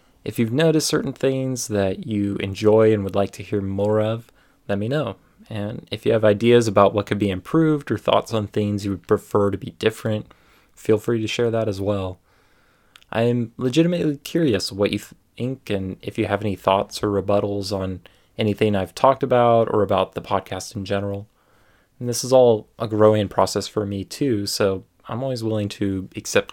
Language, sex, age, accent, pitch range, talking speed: English, male, 20-39, American, 100-120 Hz, 195 wpm